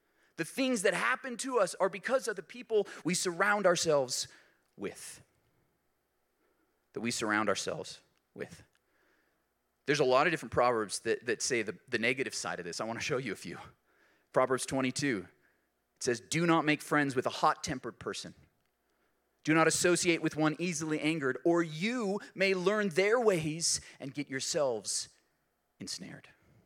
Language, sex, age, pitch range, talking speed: English, male, 30-49, 135-190 Hz, 160 wpm